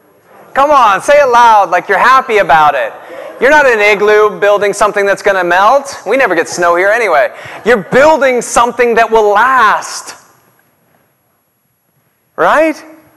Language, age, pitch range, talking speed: English, 30-49, 135-210 Hz, 155 wpm